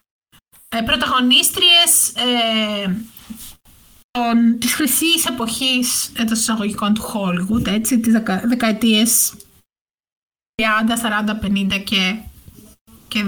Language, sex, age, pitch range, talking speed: Greek, female, 20-39, 225-255 Hz, 80 wpm